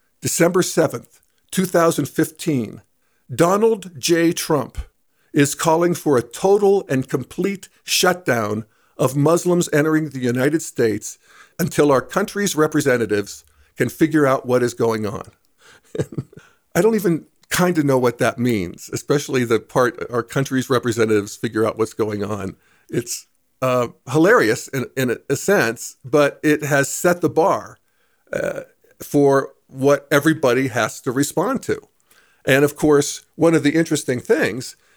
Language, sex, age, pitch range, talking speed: English, male, 50-69, 125-160 Hz, 135 wpm